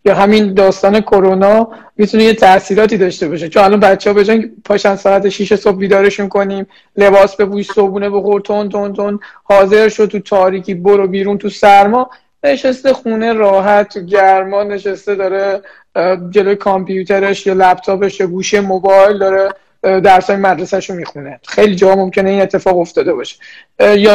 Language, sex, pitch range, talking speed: Persian, male, 195-215 Hz, 150 wpm